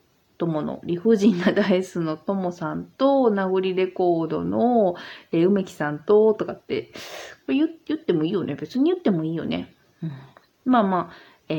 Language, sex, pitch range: Japanese, female, 165-225 Hz